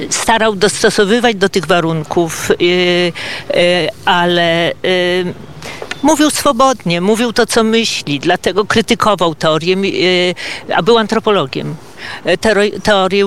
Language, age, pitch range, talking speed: Polish, 50-69, 175-220 Hz, 85 wpm